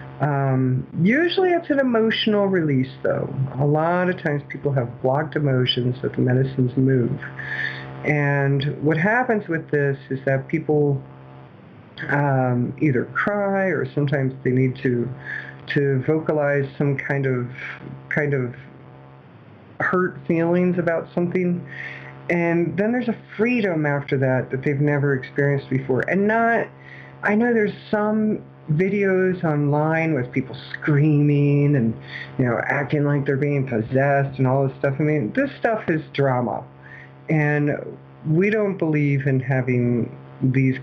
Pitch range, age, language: 130-175 Hz, 50-69, English